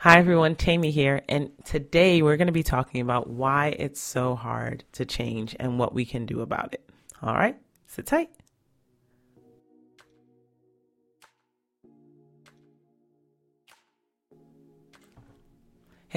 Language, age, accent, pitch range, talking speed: English, 30-49, American, 130-185 Hz, 110 wpm